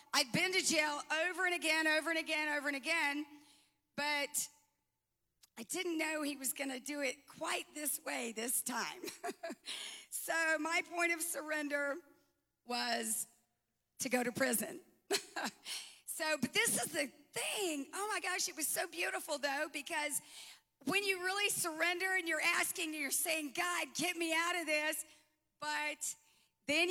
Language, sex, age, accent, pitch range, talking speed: English, female, 40-59, American, 285-345 Hz, 155 wpm